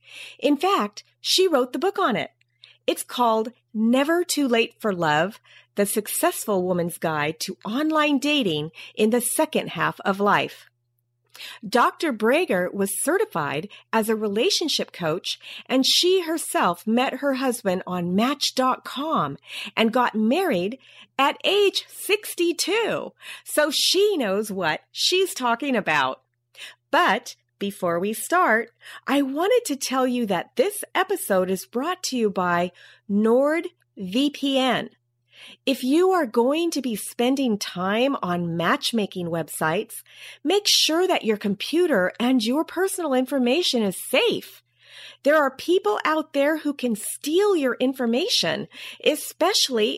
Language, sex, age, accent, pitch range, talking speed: English, female, 40-59, American, 200-310 Hz, 130 wpm